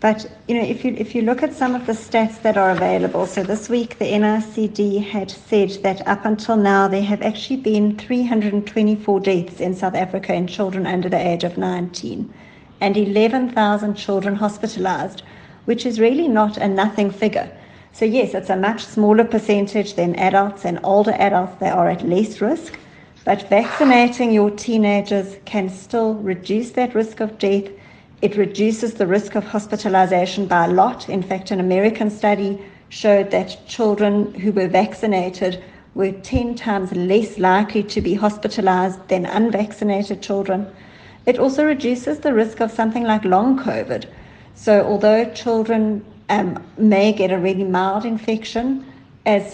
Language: English